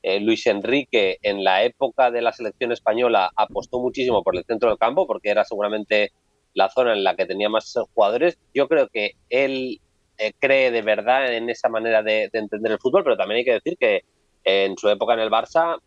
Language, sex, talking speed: Spanish, male, 215 wpm